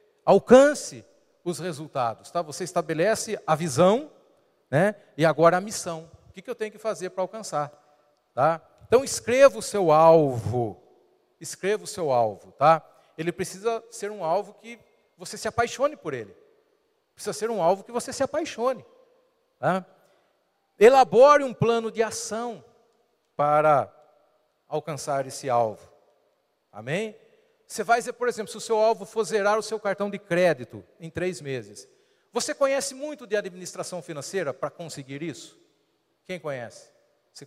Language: Portuguese